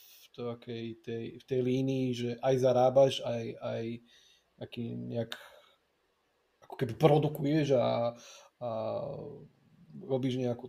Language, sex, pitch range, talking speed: Slovak, male, 115-130 Hz, 90 wpm